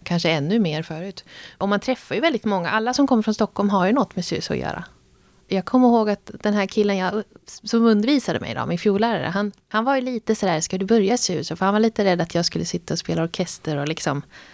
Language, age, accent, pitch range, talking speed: Swedish, 30-49, native, 170-220 Hz, 250 wpm